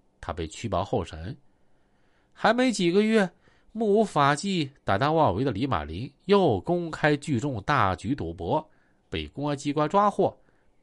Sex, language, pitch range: male, Chinese, 105-165 Hz